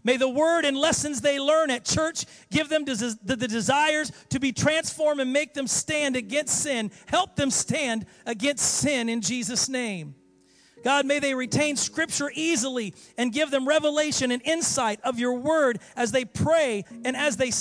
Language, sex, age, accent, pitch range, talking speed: English, male, 40-59, American, 250-325 Hz, 175 wpm